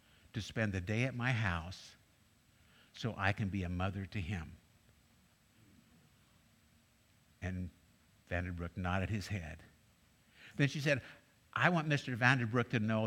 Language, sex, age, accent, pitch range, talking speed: English, male, 60-79, American, 95-125 Hz, 135 wpm